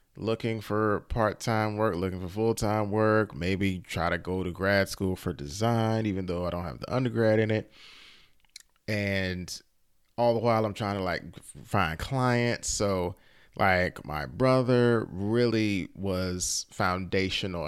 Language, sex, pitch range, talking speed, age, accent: English, male, 90-115 Hz, 145 wpm, 30-49, American